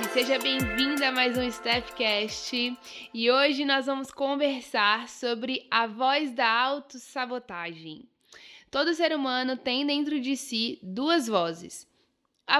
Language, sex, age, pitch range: Portuguese, female, 10-29, 220-270 Hz